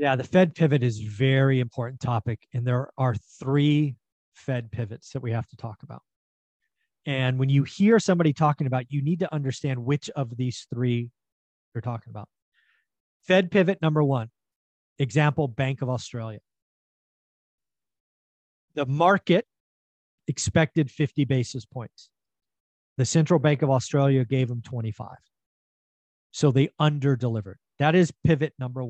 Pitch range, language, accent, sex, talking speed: 120-150 Hz, English, American, male, 140 wpm